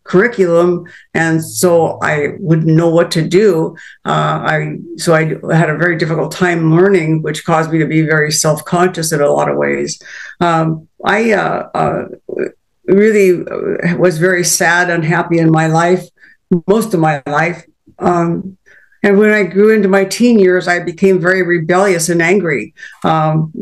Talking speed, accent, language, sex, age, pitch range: 160 wpm, American, English, female, 60-79, 160-185 Hz